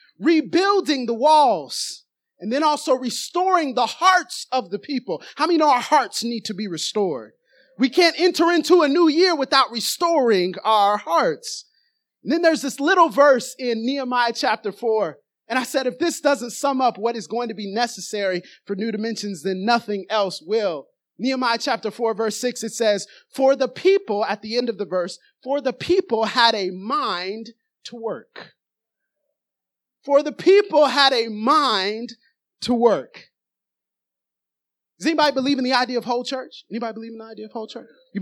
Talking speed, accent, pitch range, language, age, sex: 180 wpm, American, 230-325 Hz, English, 30-49, male